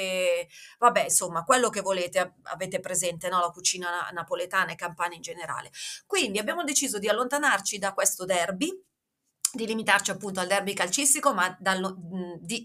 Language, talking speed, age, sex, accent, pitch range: Italian, 140 wpm, 30-49, female, native, 190-265 Hz